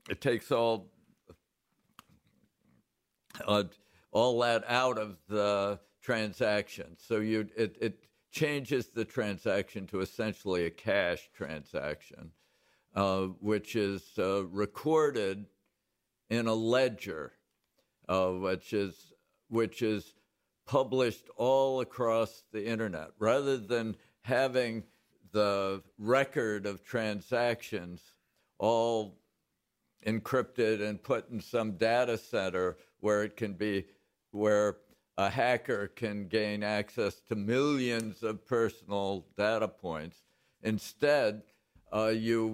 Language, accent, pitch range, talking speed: English, American, 100-125 Hz, 105 wpm